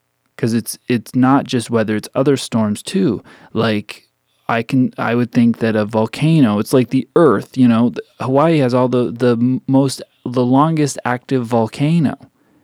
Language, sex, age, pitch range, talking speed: English, male, 30-49, 110-140 Hz, 165 wpm